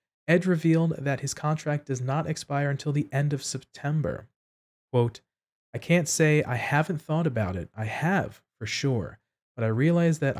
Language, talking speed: English, 175 wpm